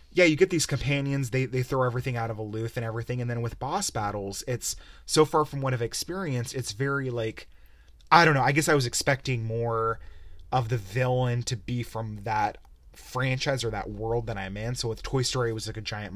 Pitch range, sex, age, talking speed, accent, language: 105-140 Hz, male, 30-49, 225 wpm, American, English